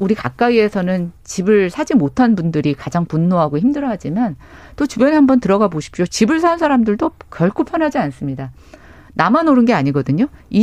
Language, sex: Korean, female